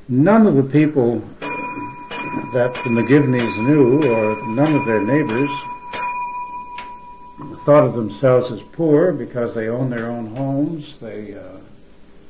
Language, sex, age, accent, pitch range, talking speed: English, male, 70-89, American, 115-145 Hz, 125 wpm